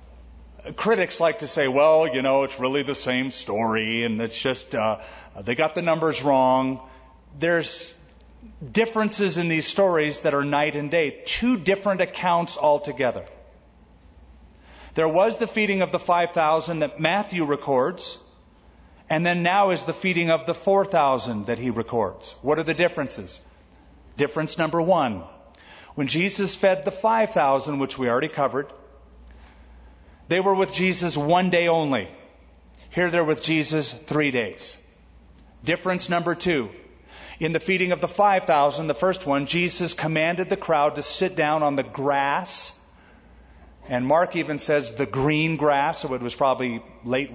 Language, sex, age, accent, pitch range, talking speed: English, male, 40-59, American, 120-170 Hz, 150 wpm